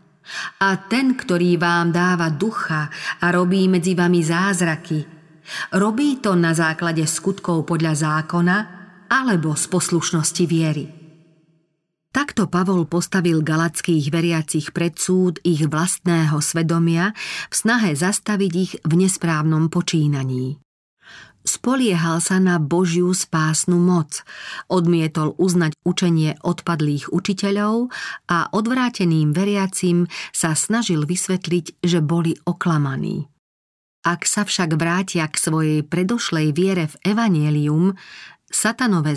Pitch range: 155-185 Hz